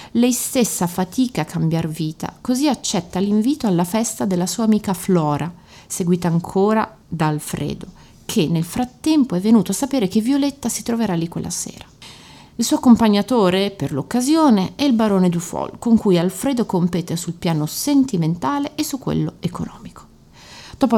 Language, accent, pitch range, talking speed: Italian, native, 180-230 Hz, 155 wpm